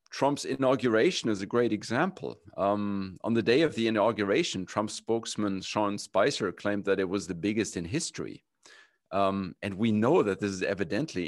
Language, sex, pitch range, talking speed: English, male, 100-120 Hz, 175 wpm